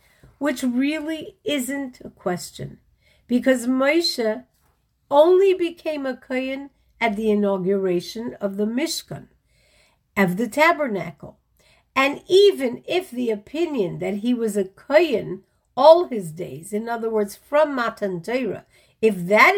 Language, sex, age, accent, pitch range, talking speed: English, female, 50-69, American, 195-275 Hz, 115 wpm